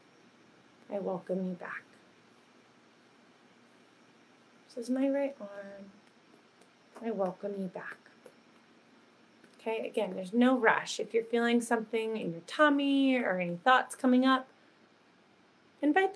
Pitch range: 200-255 Hz